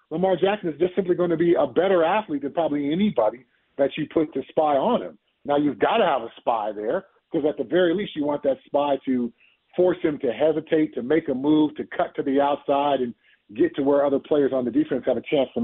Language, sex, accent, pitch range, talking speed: English, male, American, 145-190 Hz, 250 wpm